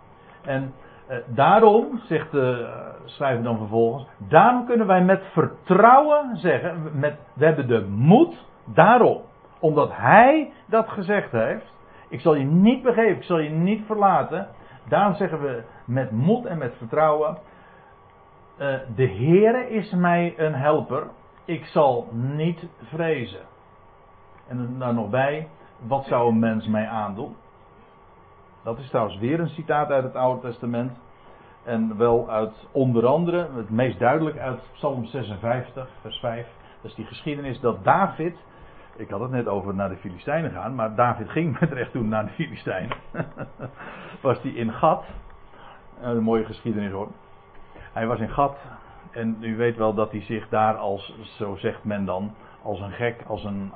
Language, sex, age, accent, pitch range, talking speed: Dutch, male, 60-79, Dutch, 115-160 Hz, 155 wpm